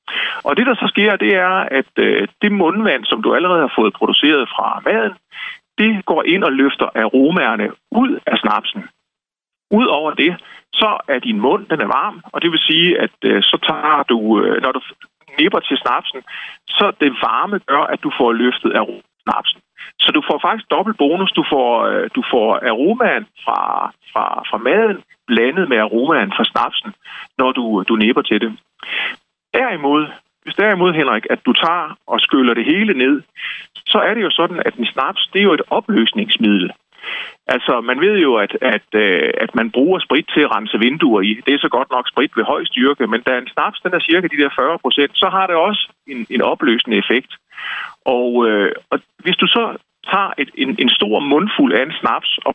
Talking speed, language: 190 wpm, Danish